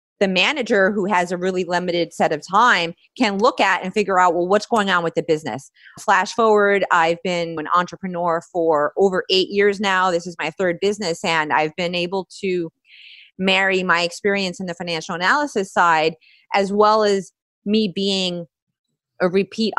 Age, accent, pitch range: 30-49, American, 170-205 Hz